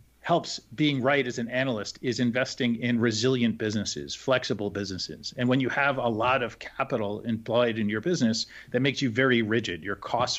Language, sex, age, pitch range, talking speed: English, male, 40-59, 105-130 Hz, 185 wpm